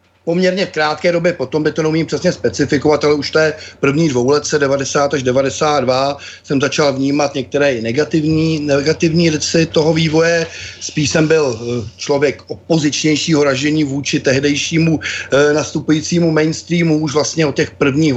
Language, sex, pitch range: Czech, male, 135-155 Hz